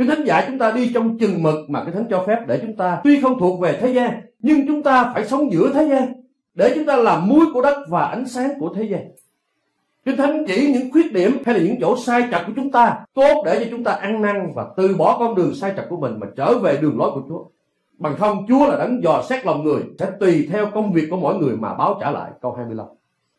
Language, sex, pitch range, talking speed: Vietnamese, male, 160-250 Hz, 270 wpm